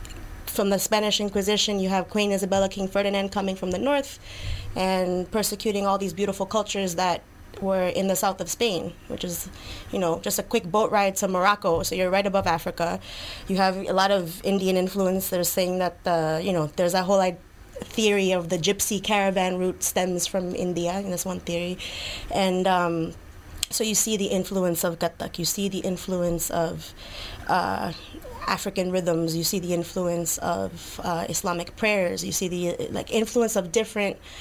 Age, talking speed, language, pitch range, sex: 20-39, 185 wpm, English, 170-200 Hz, female